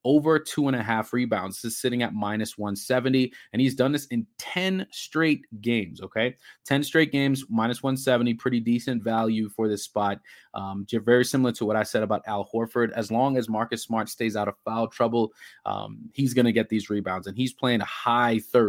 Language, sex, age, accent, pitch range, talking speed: English, male, 20-39, American, 105-125 Hz, 200 wpm